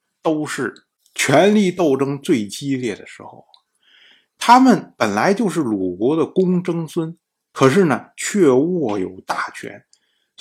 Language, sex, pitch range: Chinese, male, 135-185 Hz